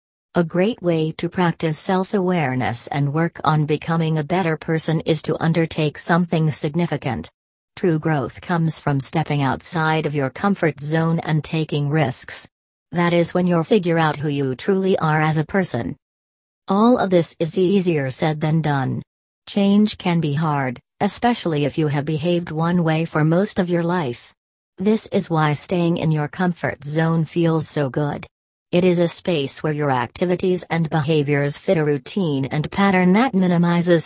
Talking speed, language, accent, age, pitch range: 165 wpm, English, American, 40-59, 145-175 Hz